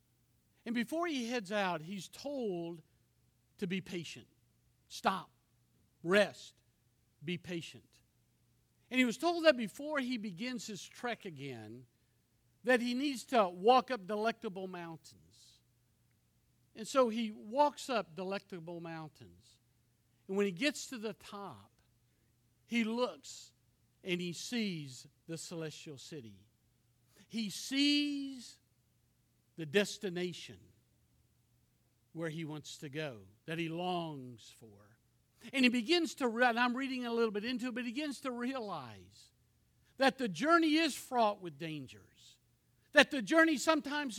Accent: American